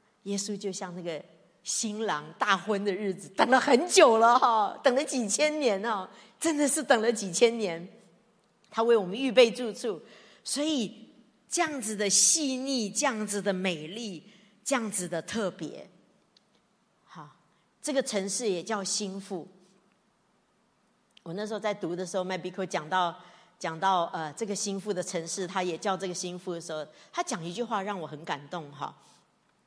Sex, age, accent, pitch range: female, 40-59, American, 185-270 Hz